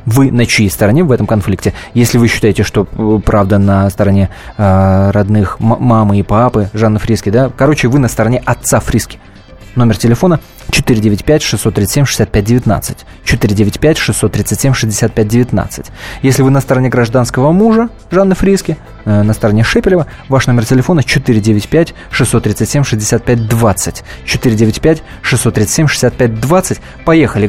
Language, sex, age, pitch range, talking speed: Russian, male, 20-39, 110-140 Hz, 110 wpm